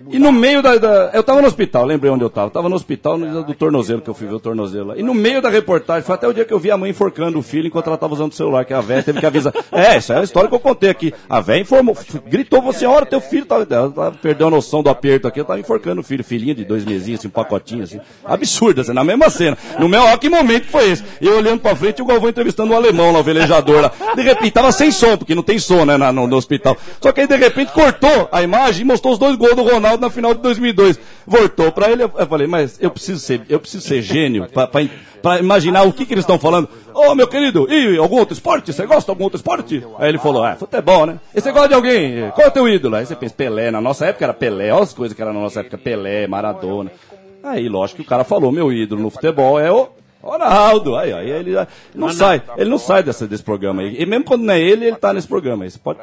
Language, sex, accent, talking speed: Portuguese, male, Brazilian, 280 wpm